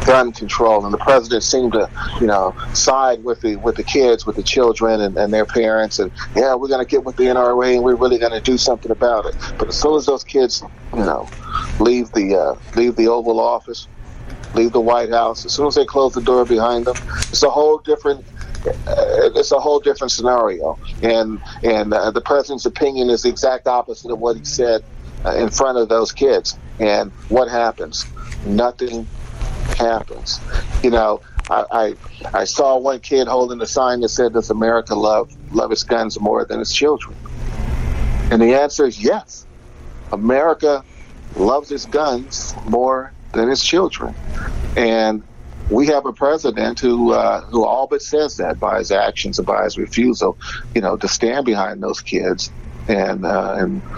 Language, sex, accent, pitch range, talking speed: English, male, American, 115-135 Hz, 185 wpm